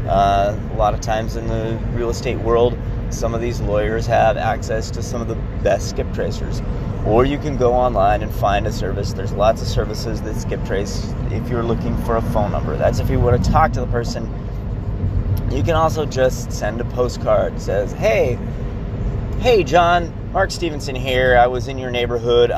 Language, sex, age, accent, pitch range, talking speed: English, male, 20-39, American, 110-125 Hz, 200 wpm